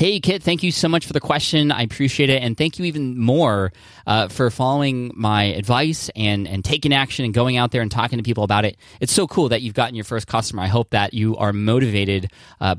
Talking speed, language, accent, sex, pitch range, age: 245 wpm, English, American, male, 100-125 Hz, 20-39